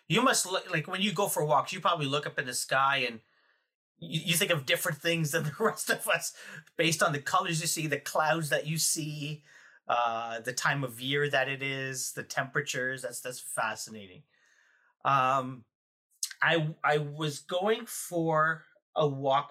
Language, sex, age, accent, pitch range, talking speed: English, male, 30-49, American, 135-165 Hz, 185 wpm